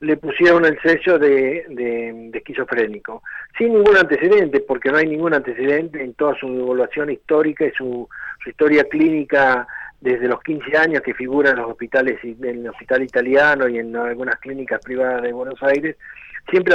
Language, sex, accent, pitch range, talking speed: Spanish, male, Argentinian, 125-155 Hz, 170 wpm